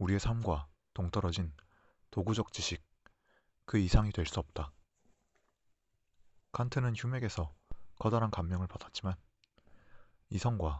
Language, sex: Korean, male